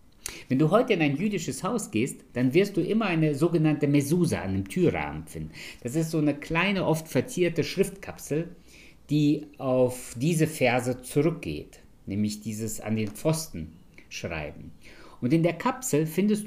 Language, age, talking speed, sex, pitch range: German, 50-69, 155 wpm, male, 110-155 Hz